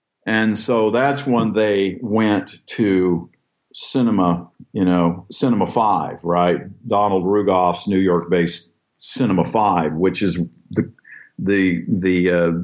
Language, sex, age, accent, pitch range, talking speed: English, male, 50-69, American, 85-105 Hz, 120 wpm